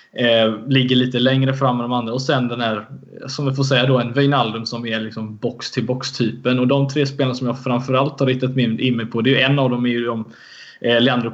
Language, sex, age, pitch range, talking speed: Swedish, male, 20-39, 115-135 Hz, 245 wpm